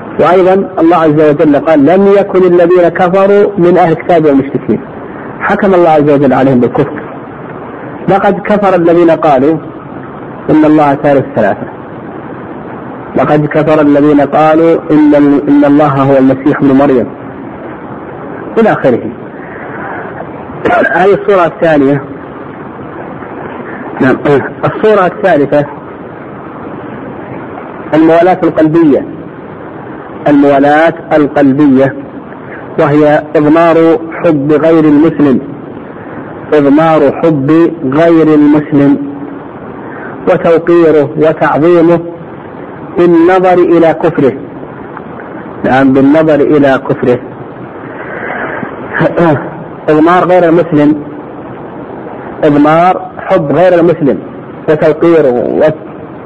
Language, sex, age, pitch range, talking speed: Arabic, male, 50-69, 145-170 Hz, 80 wpm